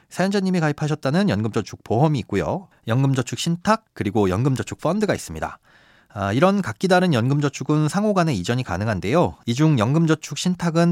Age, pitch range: 40-59, 110-165 Hz